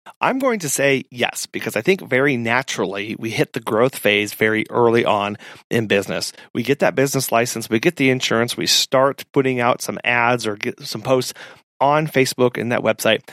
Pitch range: 115-135 Hz